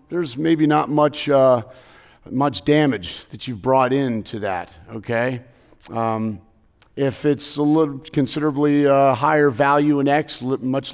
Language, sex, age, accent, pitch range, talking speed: English, male, 40-59, American, 105-140 Hz, 135 wpm